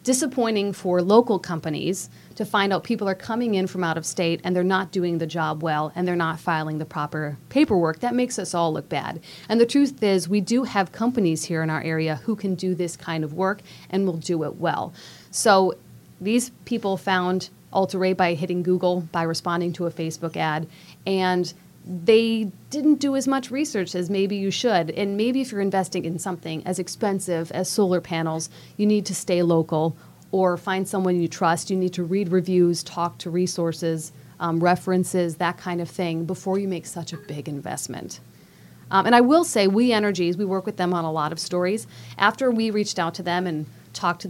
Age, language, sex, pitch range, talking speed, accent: 30-49, English, female, 170-200 Hz, 205 wpm, American